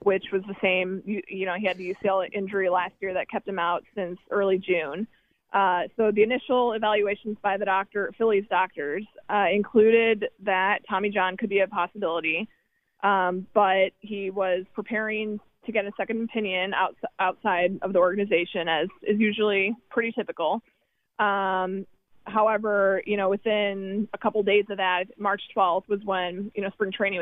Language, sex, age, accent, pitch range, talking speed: English, female, 20-39, American, 190-215 Hz, 170 wpm